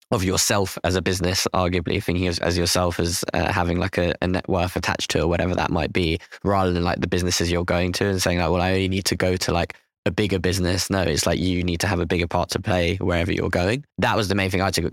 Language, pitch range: English, 90-95 Hz